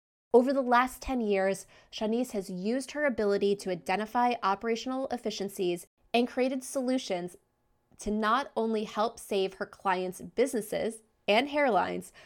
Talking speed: 130 wpm